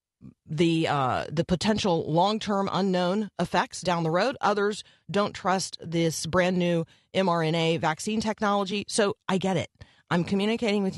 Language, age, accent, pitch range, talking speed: English, 40-59, American, 155-205 Hz, 140 wpm